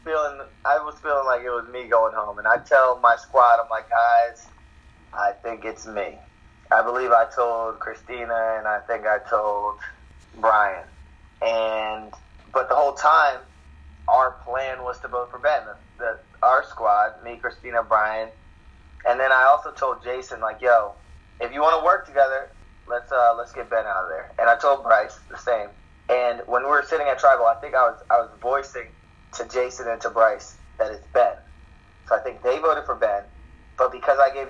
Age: 20-39